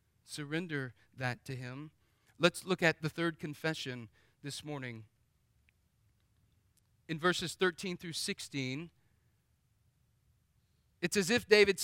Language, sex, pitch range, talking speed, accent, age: English, male, 115-175 Hz, 105 wpm, American, 40-59